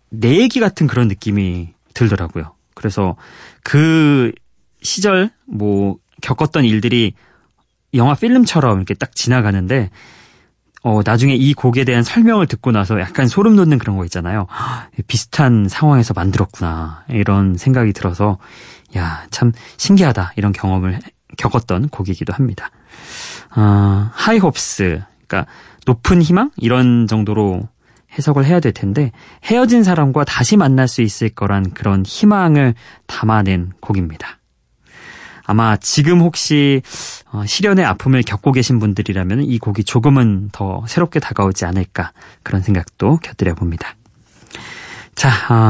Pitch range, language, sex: 100-150 Hz, Korean, male